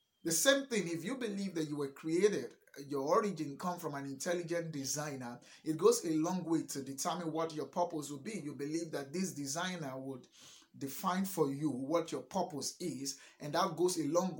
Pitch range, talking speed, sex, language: 140-185 Hz, 195 wpm, male, English